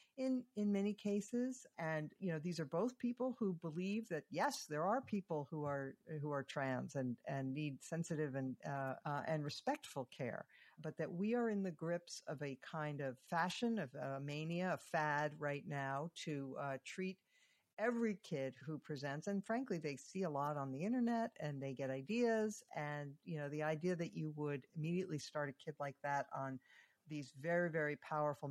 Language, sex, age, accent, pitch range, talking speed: English, female, 50-69, American, 140-175 Hz, 190 wpm